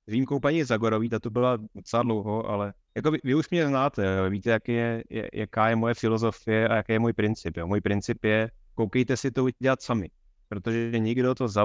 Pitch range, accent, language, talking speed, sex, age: 100-120 Hz, native, Czech, 220 wpm, male, 20-39